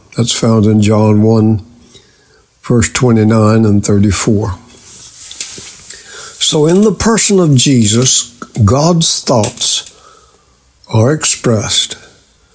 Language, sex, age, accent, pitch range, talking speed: English, male, 60-79, American, 110-130 Hz, 90 wpm